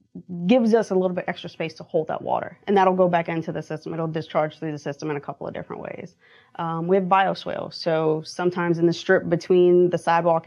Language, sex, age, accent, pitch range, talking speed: English, female, 20-39, American, 160-185 Hz, 235 wpm